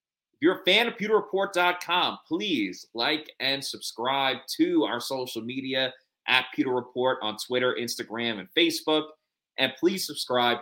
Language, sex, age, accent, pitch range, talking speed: English, male, 30-49, American, 115-155 Hz, 135 wpm